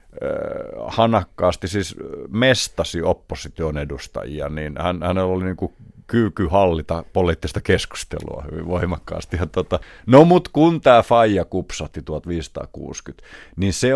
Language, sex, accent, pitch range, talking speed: Finnish, male, native, 85-115 Hz, 110 wpm